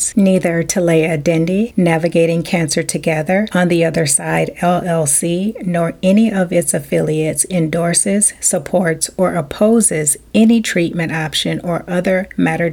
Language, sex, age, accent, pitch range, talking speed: English, female, 40-59, American, 165-195 Hz, 125 wpm